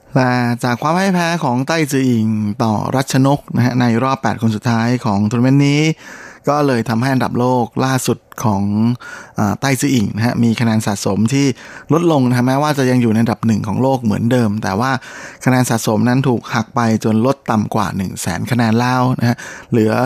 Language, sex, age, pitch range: Thai, male, 20-39, 110-130 Hz